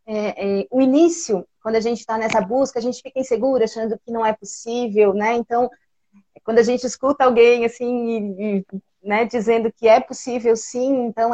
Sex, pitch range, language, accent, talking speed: female, 205-250 Hz, Portuguese, Brazilian, 190 wpm